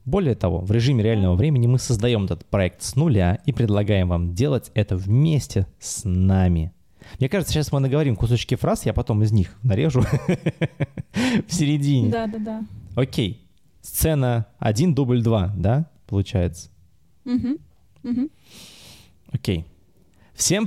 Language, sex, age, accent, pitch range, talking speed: Russian, male, 20-39, native, 105-145 Hz, 130 wpm